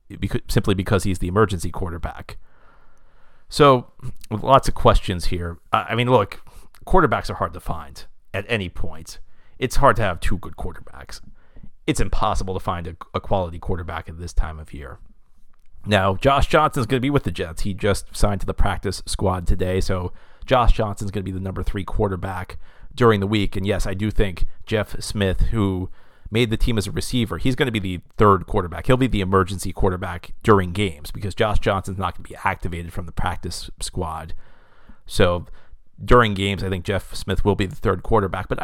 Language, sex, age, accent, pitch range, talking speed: English, male, 40-59, American, 90-105 Hz, 200 wpm